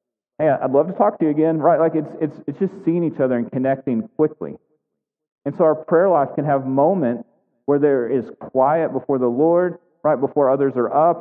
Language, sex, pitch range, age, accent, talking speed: English, male, 120-150 Hz, 30-49, American, 215 wpm